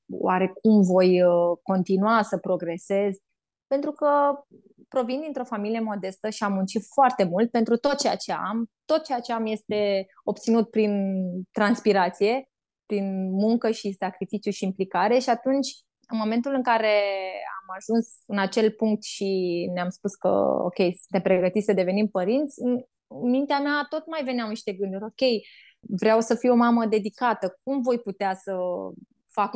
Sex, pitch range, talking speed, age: female, 195-250 Hz, 160 wpm, 20-39